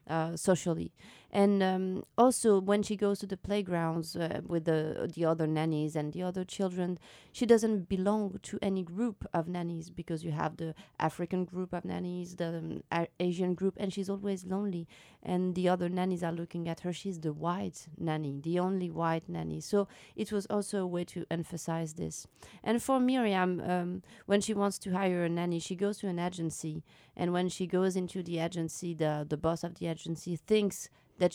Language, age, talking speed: English, 30-49, 195 wpm